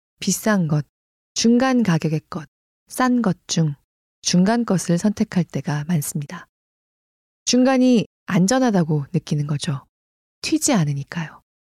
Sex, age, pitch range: female, 20-39, 145-215 Hz